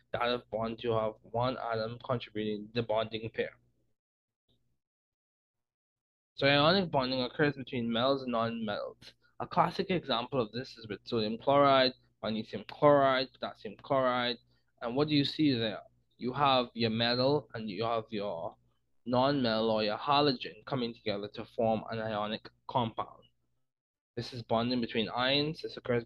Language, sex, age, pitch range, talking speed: English, male, 20-39, 110-130 Hz, 150 wpm